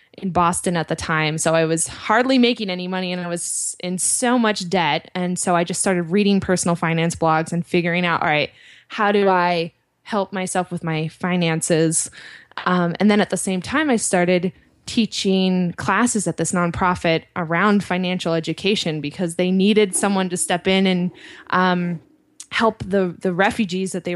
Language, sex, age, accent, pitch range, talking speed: English, female, 20-39, American, 170-200 Hz, 180 wpm